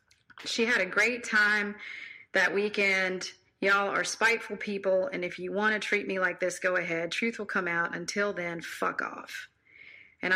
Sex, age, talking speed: female, 40-59, 180 wpm